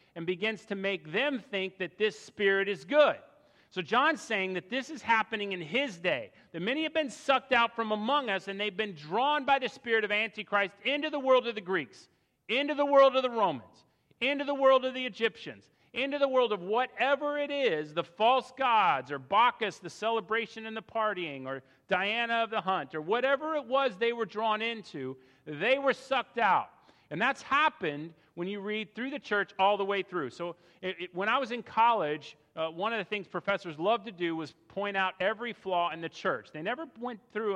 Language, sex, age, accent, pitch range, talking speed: English, male, 40-59, American, 175-245 Hz, 210 wpm